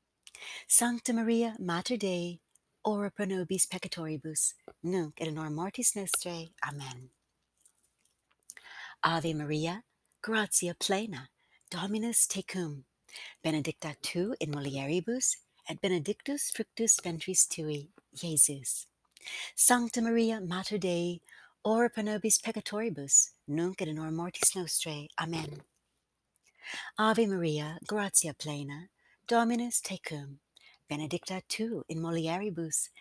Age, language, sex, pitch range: 60-79, English, female, 155-210 Hz